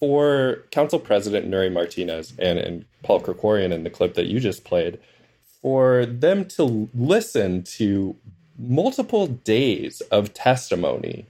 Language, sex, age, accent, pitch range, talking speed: English, male, 20-39, American, 95-130 Hz, 135 wpm